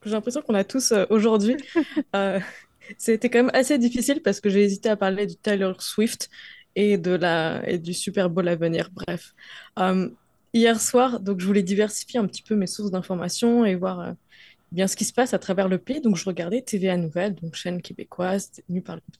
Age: 20-39